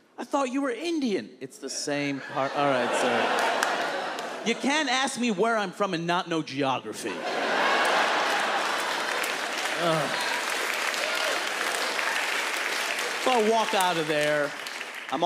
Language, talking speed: Slovak, 120 wpm